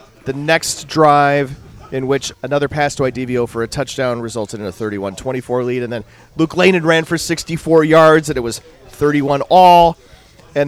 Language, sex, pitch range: English, male, 135-170 Hz